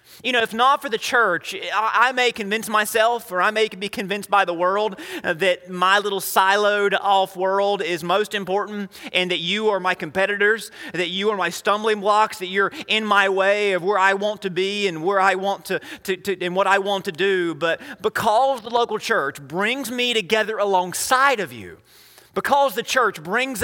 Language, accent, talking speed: English, American, 200 wpm